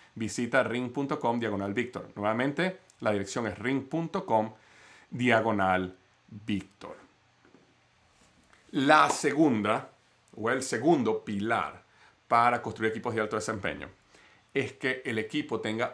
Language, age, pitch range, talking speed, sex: Spanish, 40-59, 110-150 Hz, 105 wpm, male